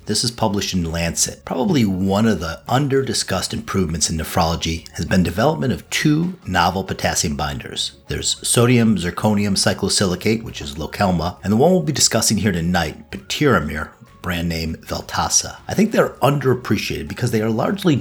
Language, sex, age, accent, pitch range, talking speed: English, male, 50-69, American, 90-120 Hz, 165 wpm